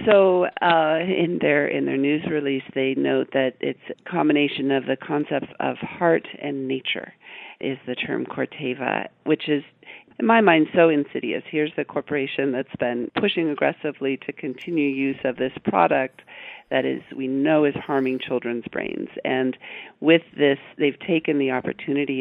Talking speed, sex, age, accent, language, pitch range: 160 wpm, female, 50-69, American, English, 130-155 Hz